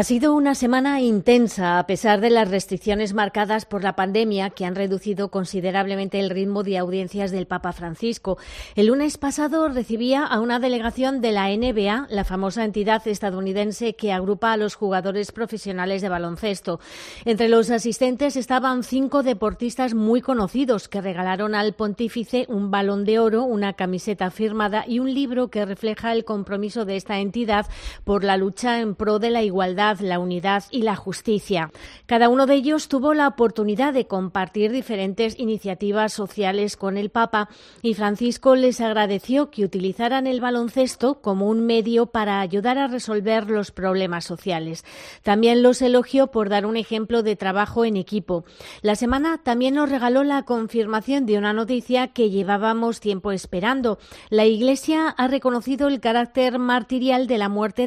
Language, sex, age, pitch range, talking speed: Spanish, female, 30-49, 200-245 Hz, 165 wpm